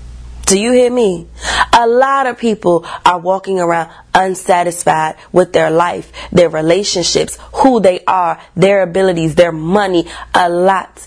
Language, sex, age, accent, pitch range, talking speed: English, female, 30-49, American, 165-225 Hz, 140 wpm